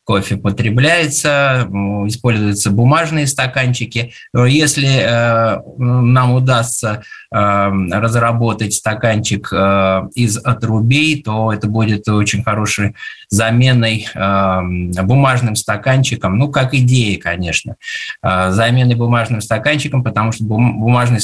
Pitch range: 105-135 Hz